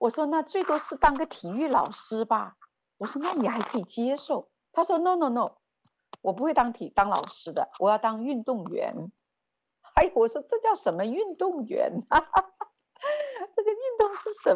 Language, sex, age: Chinese, female, 50-69